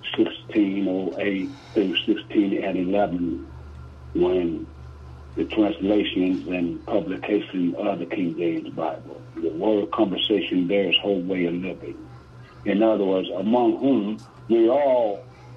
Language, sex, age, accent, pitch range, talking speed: English, male, 60-79, American, 90-125 Hz, 115 wpm